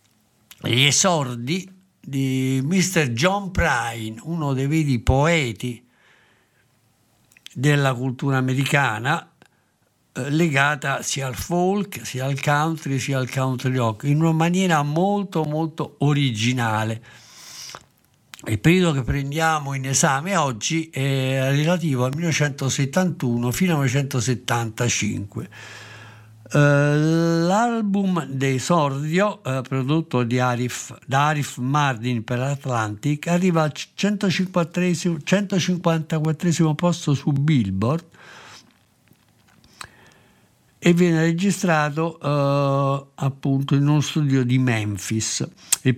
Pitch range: 125-165 Hz